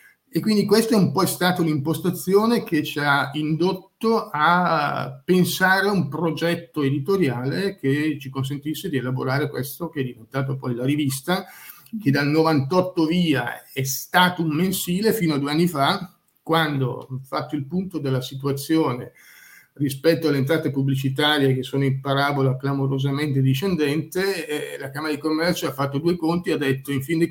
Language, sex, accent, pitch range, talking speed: Italian, male, native, 135-170 Hz, 160 wpm